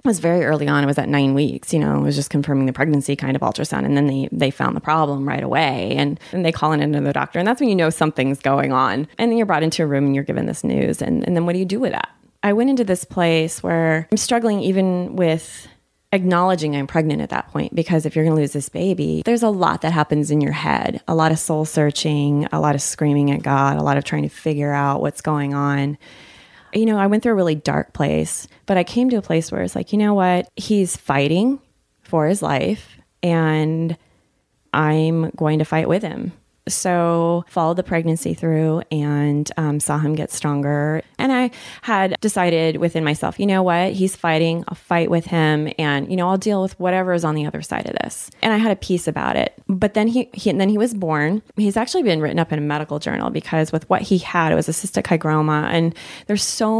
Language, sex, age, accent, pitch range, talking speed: English, female, 20-39, American, 150-185 Hz, 245 wpm